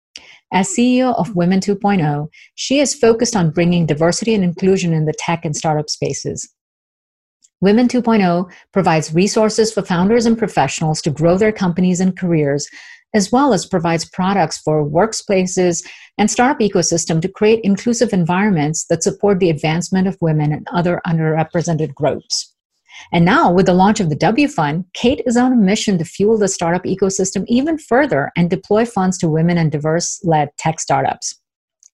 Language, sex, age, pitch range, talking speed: English, female, 50-69, 160-210 Hz, 165 wpm